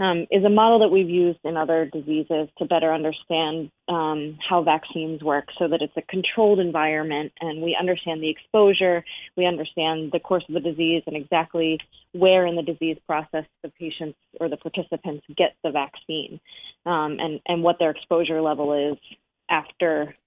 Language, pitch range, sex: English, 160-190 Hz, female